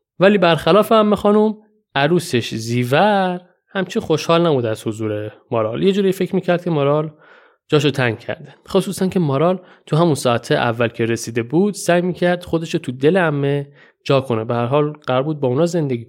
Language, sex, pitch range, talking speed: Persian, male, 125-185 Hz, 170 wpm